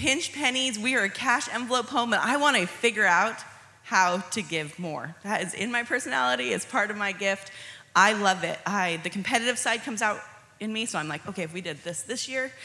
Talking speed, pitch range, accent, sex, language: 230 wpm, 185-260 Hz, American, female, English